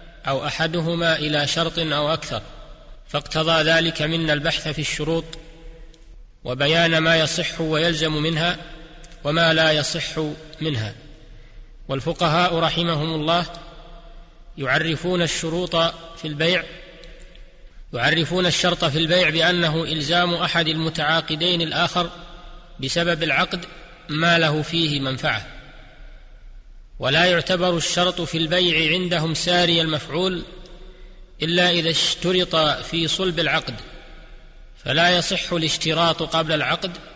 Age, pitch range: 30-49, 155-175 Hz